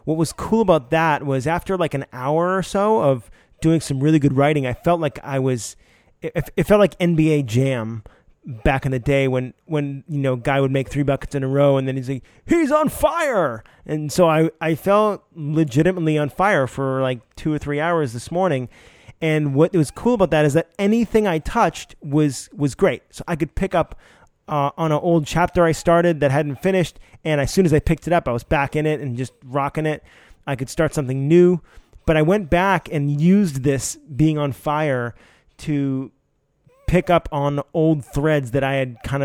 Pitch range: 135-165 Hz